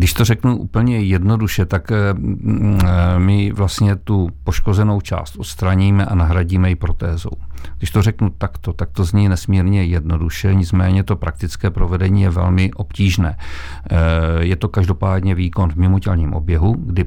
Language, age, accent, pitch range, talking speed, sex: Czech, 50-69, native, 90-100 Hz, 140 wpm, male